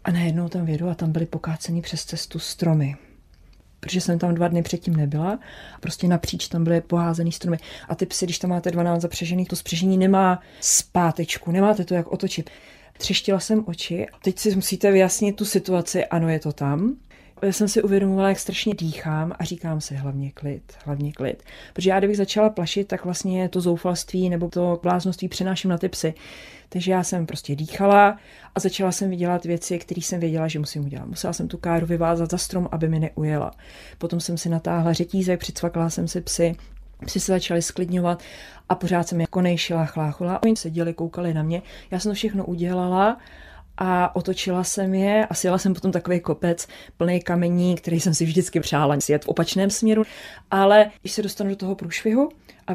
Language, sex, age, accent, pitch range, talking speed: Czech, female, 30-49, native, 165-190 Hz, 190 wpm